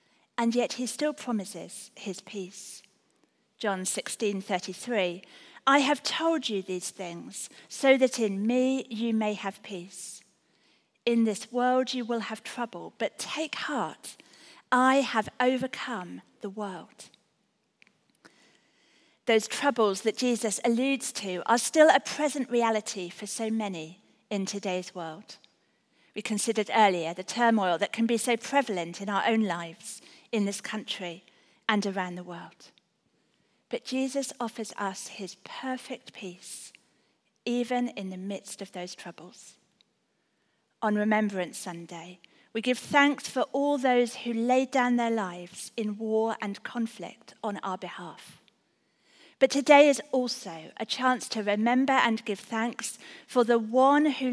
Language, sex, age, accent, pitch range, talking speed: English, female, 40-59, British, 195-250 Hz, 140 wpm